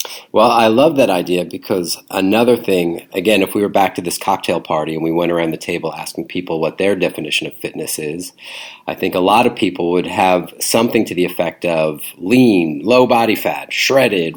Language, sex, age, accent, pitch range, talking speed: English, male, 40-59, American, 85-110 Hz, 205 wpm